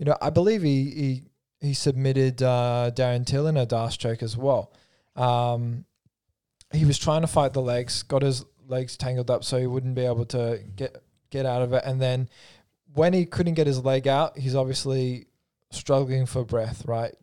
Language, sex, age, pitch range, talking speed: English, male, 20-39, 115-135 Hz, 195 wpm